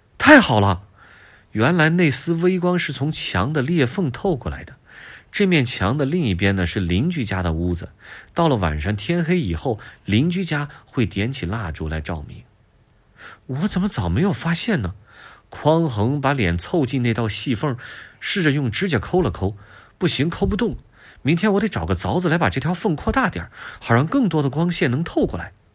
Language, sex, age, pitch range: Chinese, male, 30-49, 95-145 Hz